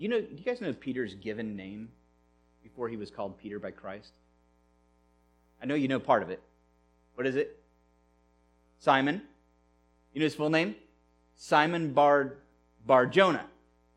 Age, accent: 30-49, American